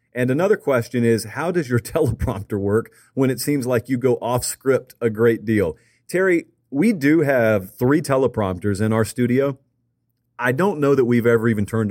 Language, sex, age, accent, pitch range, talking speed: English, male, 40-59, American, 110-135 Hz, 185 wpm